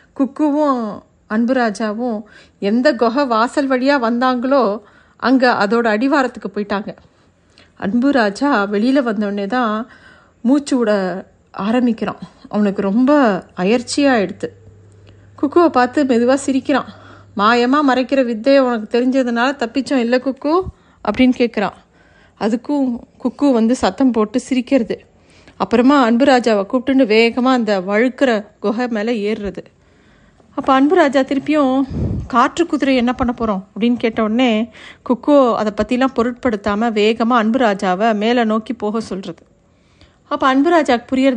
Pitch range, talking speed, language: 215-265 Hz, 115 wpm, Tamil